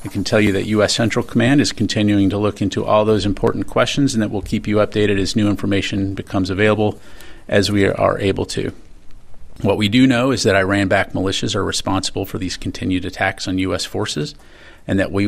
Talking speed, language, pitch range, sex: 210 wpm, Italian, 110-150 Hz, male